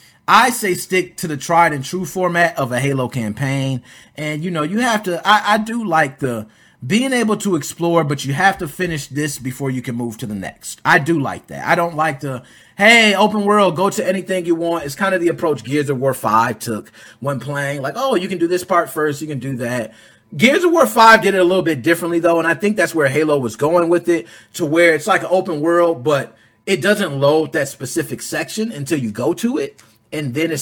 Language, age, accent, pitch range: English, 30-49, American, 140-190 Hz